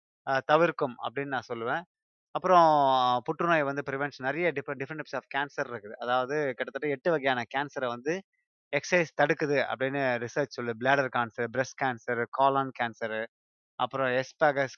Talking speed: 140 wpm